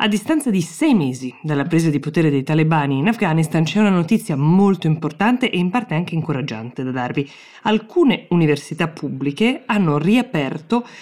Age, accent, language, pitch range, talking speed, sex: 20-39, native, Italian, 140-180 Hz, 165 wpm, female